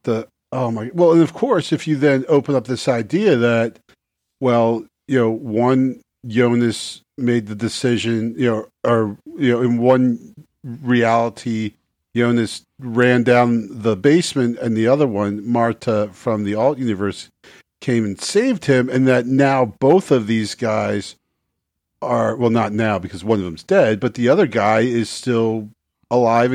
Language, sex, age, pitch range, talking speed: English, male, 50-69, 110-125 Hz, 165 wpm